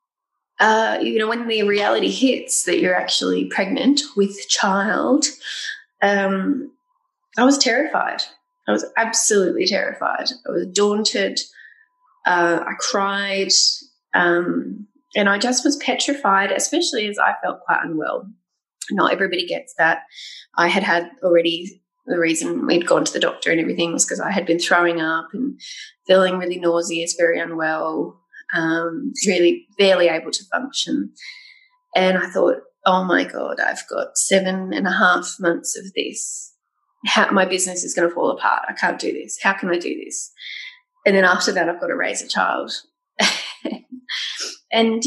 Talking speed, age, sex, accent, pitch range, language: 155 wpm, 20-39, female, Australian, 185-290 Hz, English